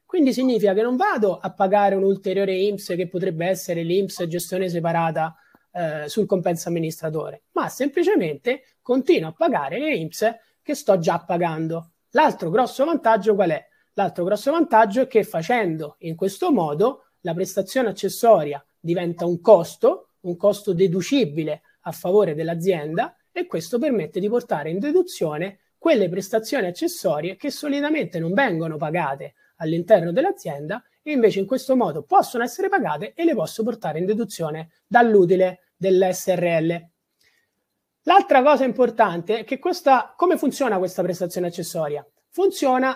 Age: 30-49